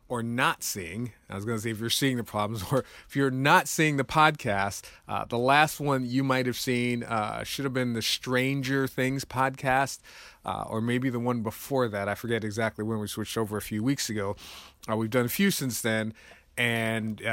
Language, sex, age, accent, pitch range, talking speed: English, male, 30-49, American, 110-135 Hz, 215 wpm